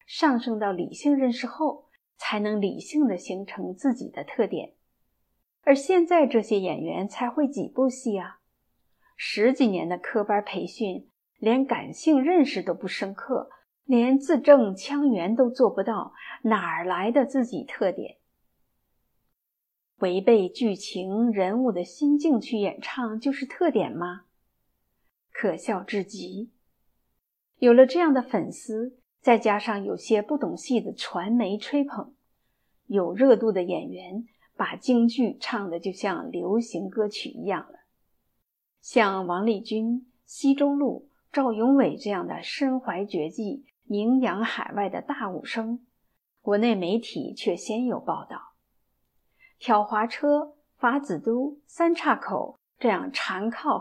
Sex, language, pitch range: female, Chinese, 205-270 Hz